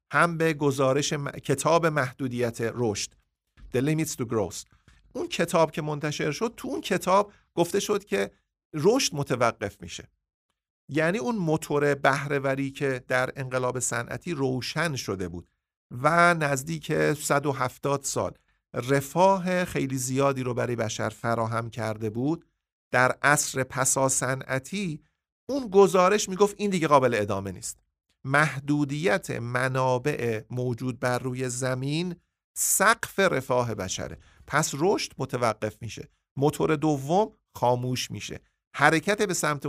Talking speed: 120 wpm